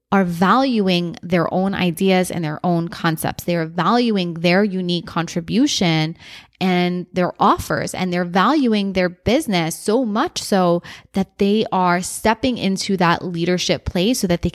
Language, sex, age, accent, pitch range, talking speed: English, female, 20-39, American, 175-225 Hz, 155 wpm